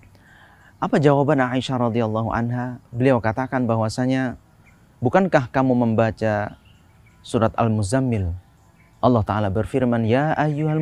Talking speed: 100 wpm